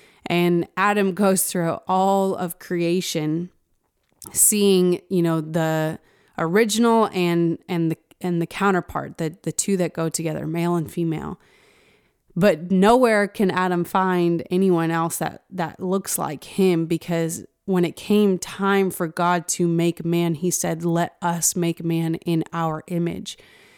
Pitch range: 170-195 Hz